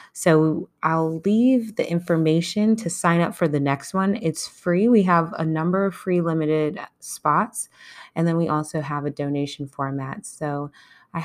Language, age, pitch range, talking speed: English, 20-39, 145-195 Hz, 170 wpm